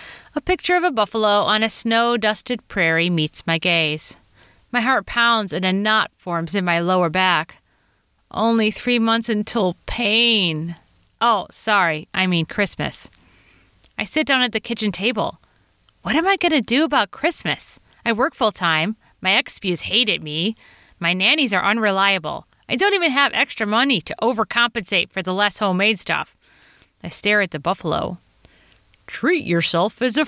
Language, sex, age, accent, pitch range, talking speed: English, female, 30-49, American, 165-230 Hz, 160 wpm